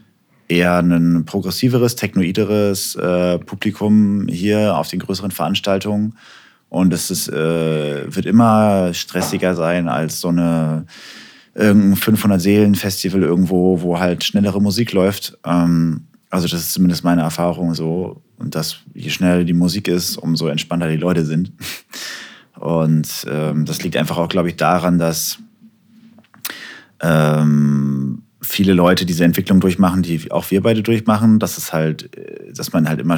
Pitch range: 85-100 Hz